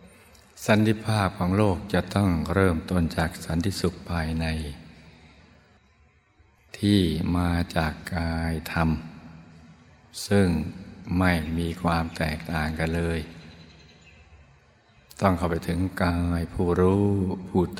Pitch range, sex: 80-95 Hz, male